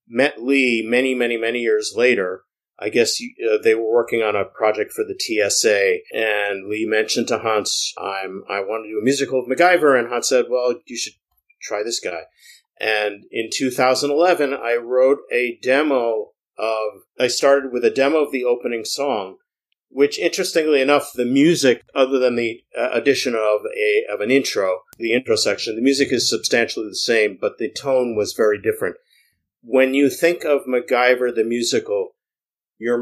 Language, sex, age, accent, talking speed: English, male, 50-69, American, 175 wpm